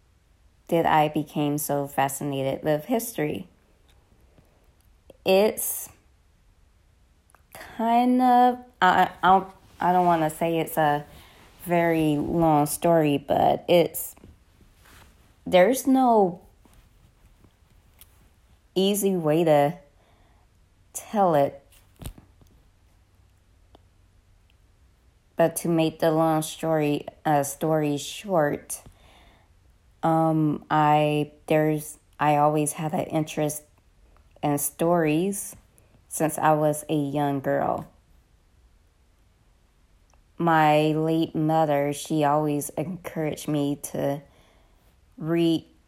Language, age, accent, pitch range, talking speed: English, 20-39, American, 95-160 Hz, 85 wpm